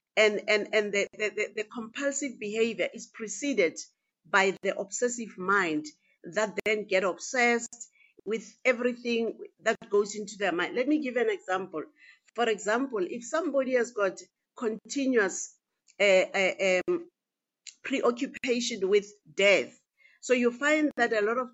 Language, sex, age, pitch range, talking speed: English, female, 50-69, 205-255 Hz, 140 wpm